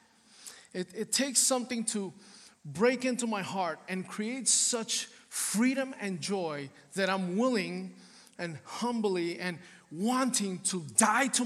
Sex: male